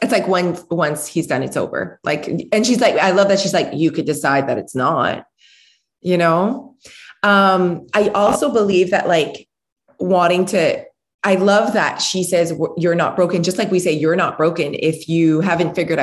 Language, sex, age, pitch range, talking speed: English, female, 20-39, 160-195 Hz, 195 wpm